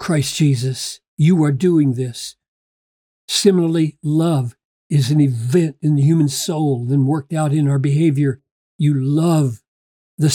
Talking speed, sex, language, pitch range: 140 wpm, male, English, 135-180 Hz